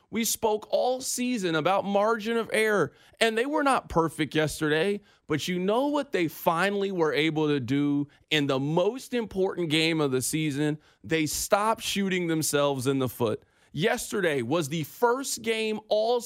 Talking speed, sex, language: 165 wpm, male, English